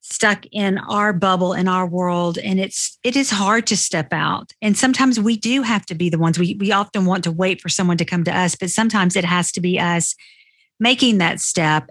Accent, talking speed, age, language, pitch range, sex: American, 230 wpm, 50-69, English, 175-215 Hz, female